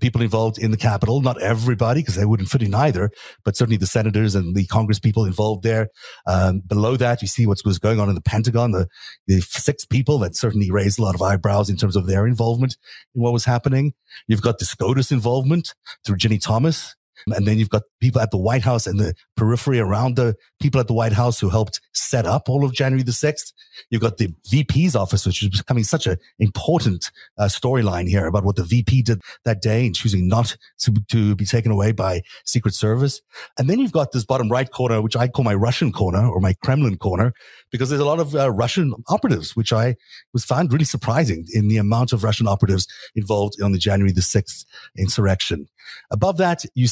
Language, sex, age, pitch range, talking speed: English, male, 30-49, 105-125 Hz, 220 wpm